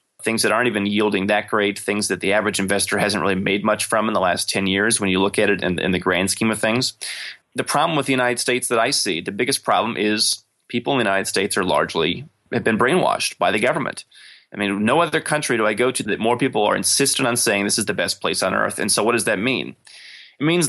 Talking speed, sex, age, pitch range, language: 265 wpm, male, 20-39, 100-130 Hz, English